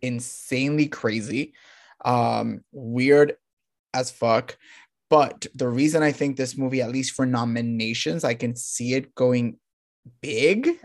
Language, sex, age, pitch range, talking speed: English, male, 20-39, 125-165 Hz, 125 wpm